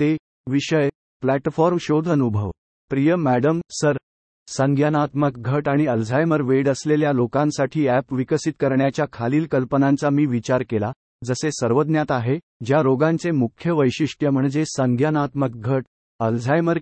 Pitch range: 130-155 Hz